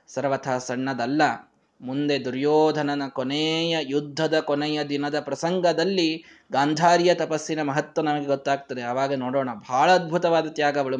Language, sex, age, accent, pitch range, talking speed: Kannada, male, 20-39, native, 140-185 Hz, 110 wpm